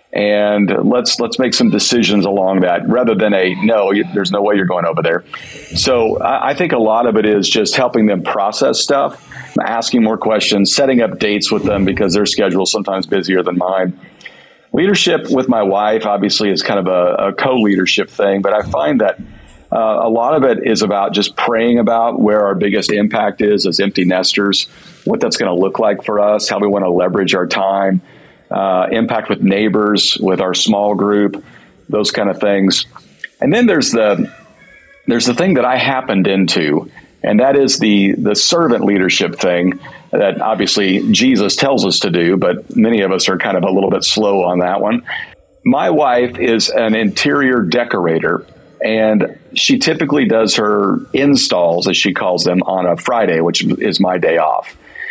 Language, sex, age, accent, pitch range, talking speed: English, male, 50-69, American, 95-110 Hz, 190 wpm